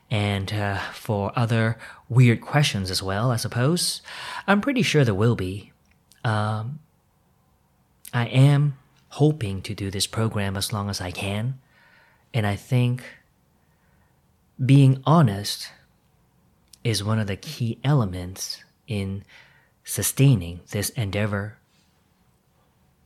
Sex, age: male, 30-49